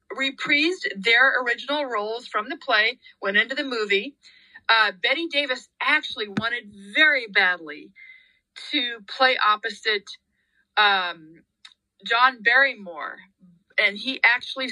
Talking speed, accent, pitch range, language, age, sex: 110 wpm, American, 205-265 Hz, English, 40-59, female